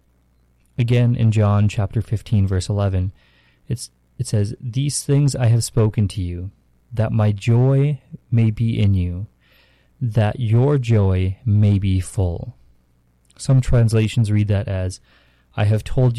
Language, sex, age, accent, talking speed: English, male, 30-49, American, 135 wpm